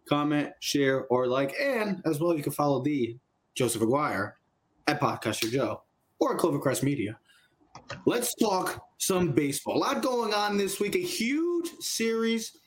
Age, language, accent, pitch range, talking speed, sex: 20-39, English, American, 150-225 Hz, 155 wpm, male